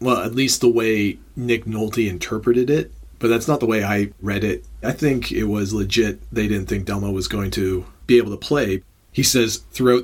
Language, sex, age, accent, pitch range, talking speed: English, male, 40-59, American, 105-120 Hz, 215 wpm